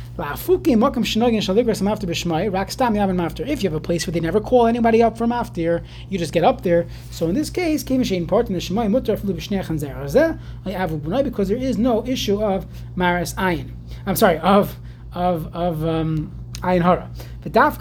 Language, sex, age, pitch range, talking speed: English, male, 30-49, 155-220 Hz, 115 wpm